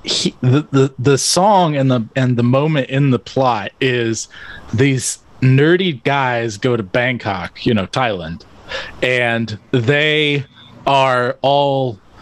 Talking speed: 135 wpm